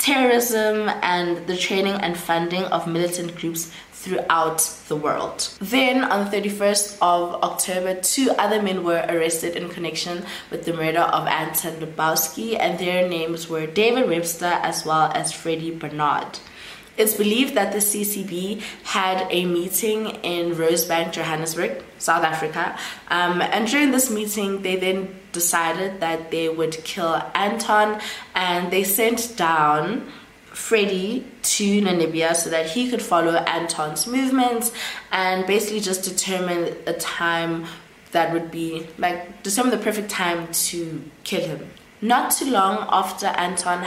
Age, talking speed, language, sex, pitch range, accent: 20-39, 140 wpm, English, female, 165-205 Hz, South African